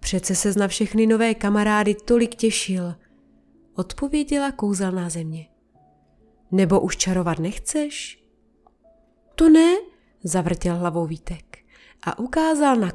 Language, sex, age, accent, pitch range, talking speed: Czech, female, 30-49, native, 180-285 Hz, 105 wpm